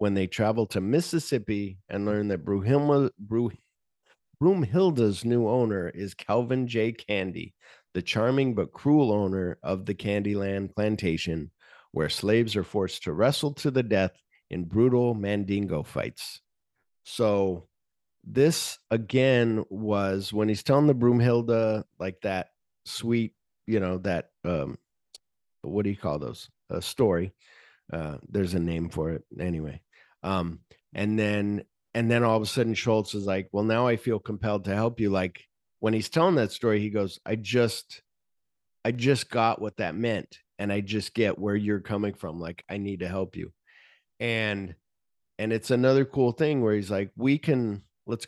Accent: American